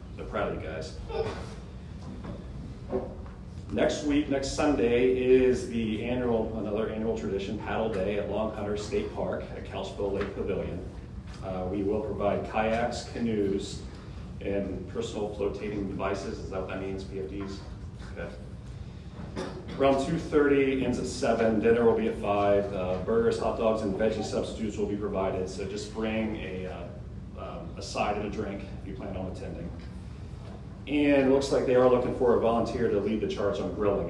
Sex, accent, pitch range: male, American, 95-115 Hz